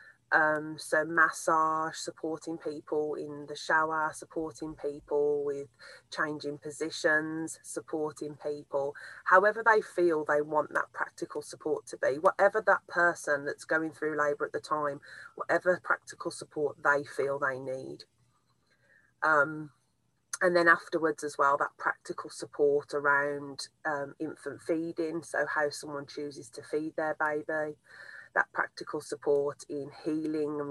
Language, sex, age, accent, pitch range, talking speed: English, female, 30-49, British, 140-160 Hz, 135 wpm